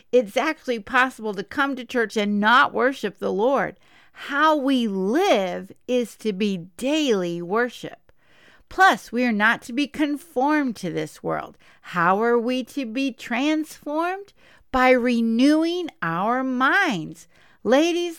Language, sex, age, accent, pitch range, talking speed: English, female, 50-69, American, 225-290 Hz, 135 wpm